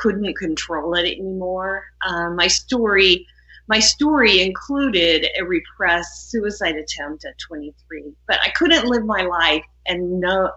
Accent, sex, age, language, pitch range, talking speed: American, female, 50-69, English, 165-205 Hz, 140 wpm